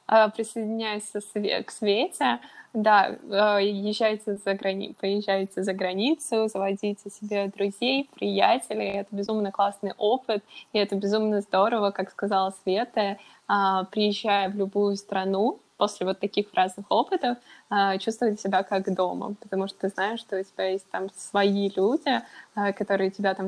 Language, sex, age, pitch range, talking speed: English, female, 20-39, 195-220 Hz, 135 wpm